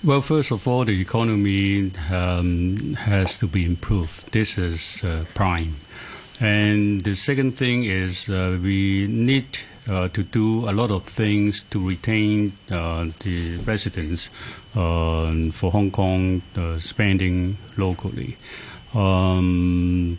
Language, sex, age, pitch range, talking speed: English, male, 60-79, 95-120 Hz, 130 wpm